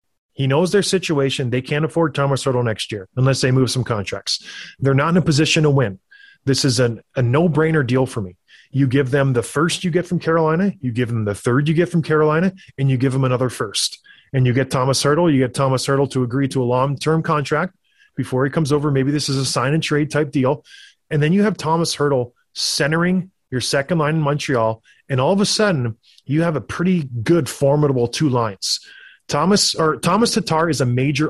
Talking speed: 220 wpm